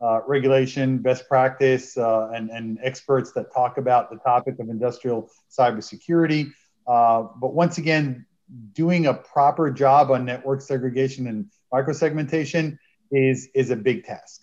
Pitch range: 125-150 Hz